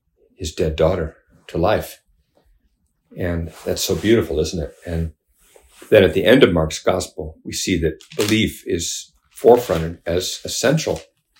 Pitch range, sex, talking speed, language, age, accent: 80-90 Hz, male, 140 wpm, English, 50-69, American